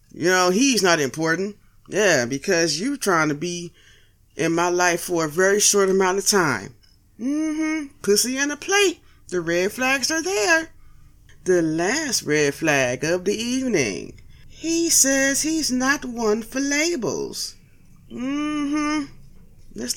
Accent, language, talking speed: American, English, 145 wpm